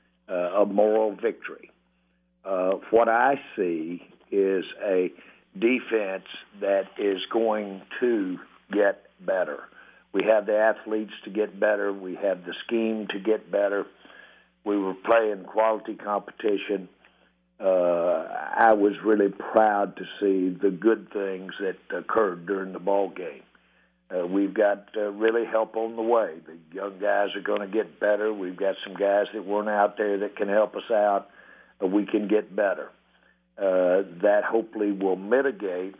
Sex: male